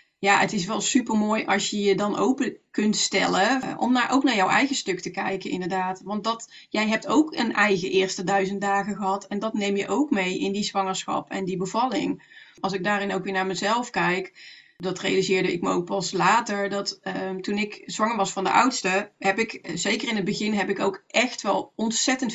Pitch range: 190-225 Hz